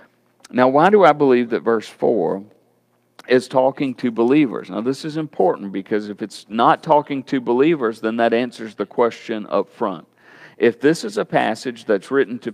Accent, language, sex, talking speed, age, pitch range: American, English, male, 180 wpm, 50-69, 110-135 Hz